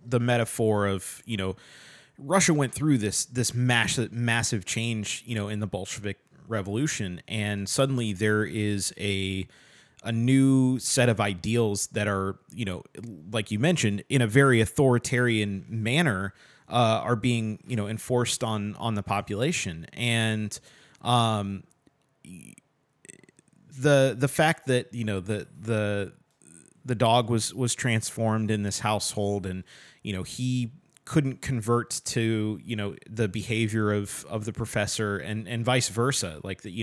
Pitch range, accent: 105-125 Hz, American